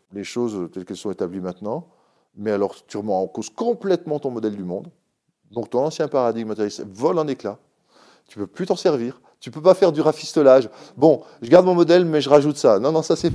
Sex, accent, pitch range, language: male, French, 105-140 Hz, French